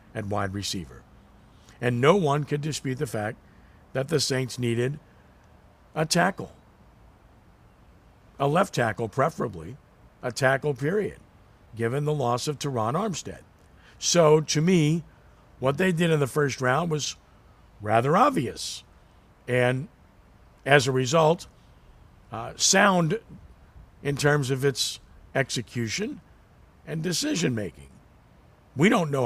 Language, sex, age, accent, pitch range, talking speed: English, male, 50-69, American, 110-150 Hz, 120 wpm